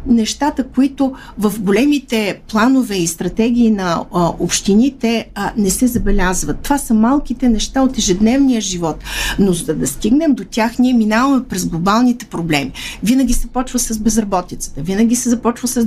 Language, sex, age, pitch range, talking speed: Bulgarian, female, 50-69, 190-245 Hz, 155 wpm